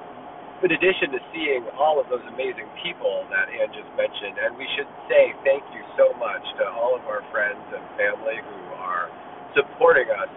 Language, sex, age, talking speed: English, male, 40-59, 185 wpm